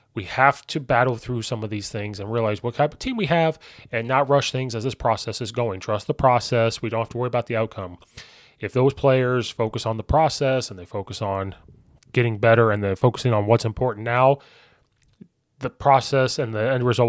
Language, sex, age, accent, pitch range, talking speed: English, male, 20-39, American, 110-130 Hz, 220 wpm